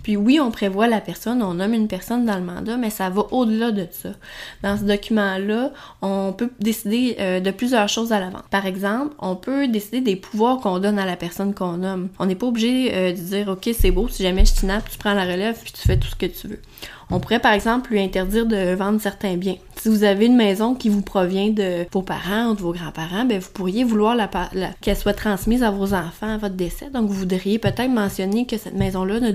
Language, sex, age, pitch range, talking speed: English, female, 20-39, 190-230 Hz, 245 wpm